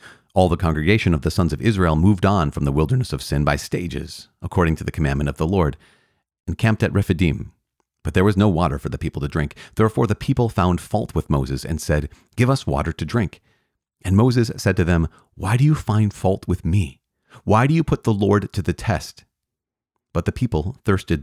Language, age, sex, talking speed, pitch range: English, 40-59, male, 220 wpm, 75-100 Hz